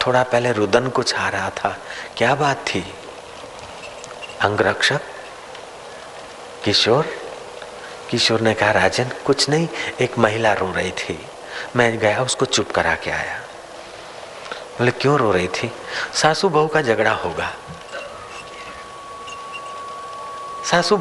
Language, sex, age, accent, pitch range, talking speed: Hindi, male, 40-59, native, 105-150 Hz, 115 wpm